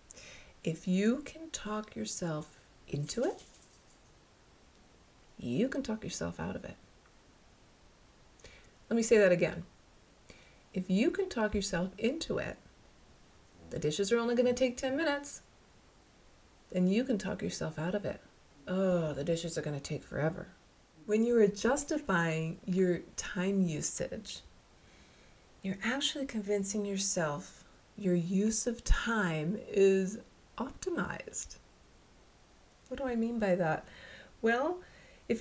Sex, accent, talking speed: female, American, 130 wpm